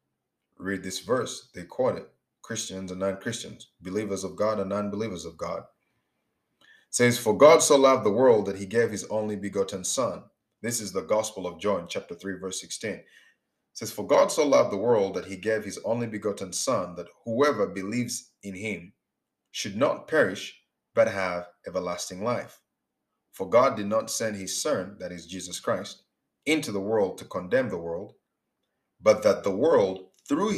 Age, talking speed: 30-49, 175 wpm